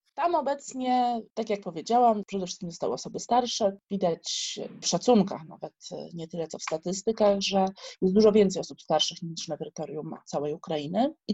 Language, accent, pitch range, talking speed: Polish, native, 190-245 Hz, 165 wpm